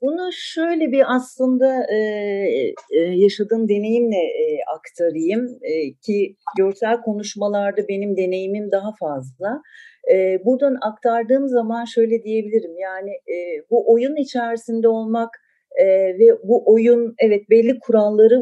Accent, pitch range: native, 210-275 Hz